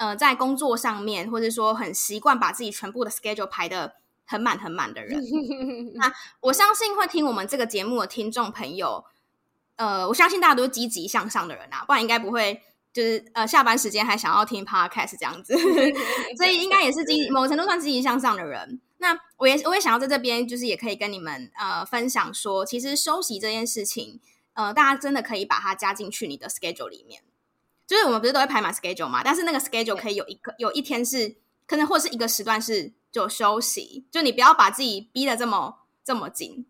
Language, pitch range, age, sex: Chinese, 215-275 Hz, 10-29, female